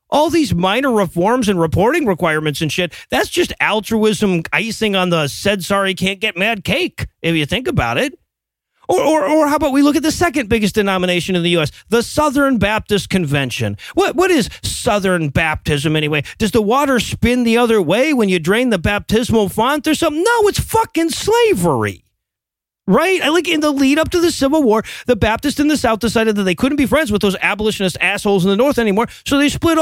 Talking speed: 200 wpm